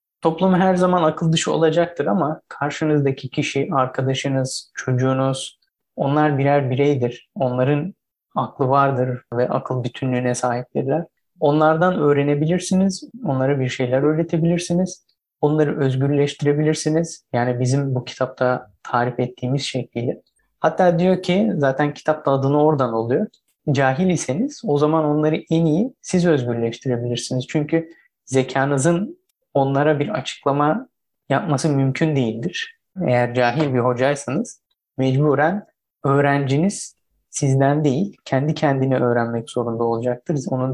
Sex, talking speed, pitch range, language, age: male, 110 wpm, 130-160 Hz, Turkish, 30-49